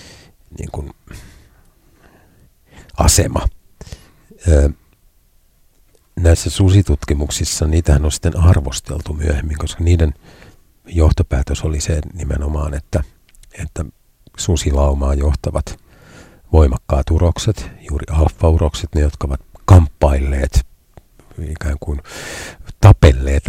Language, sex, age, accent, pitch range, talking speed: Finnish, male, 50-69, native, 75-90 Hz, 80 wpm